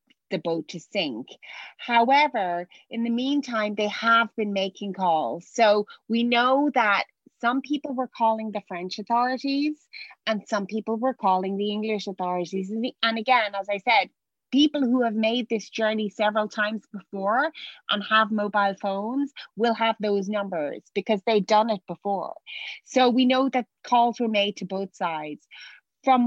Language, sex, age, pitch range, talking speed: English, female, 30-49, 200-245 Hz, 160 wpm